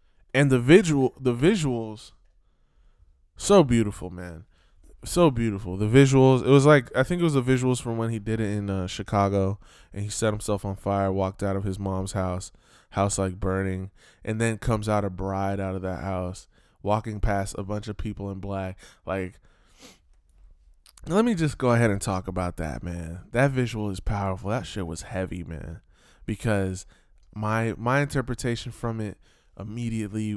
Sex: male